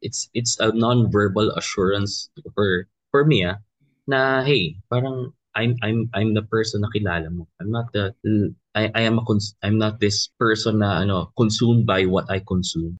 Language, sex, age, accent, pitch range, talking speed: Filipino, male, 20-39, native, 95-115 Hz, 170 wpm